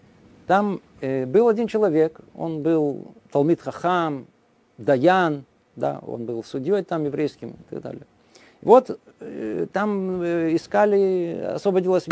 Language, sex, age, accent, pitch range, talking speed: Russian, male, 50-69, native, 145-200 Hz, 105 wpm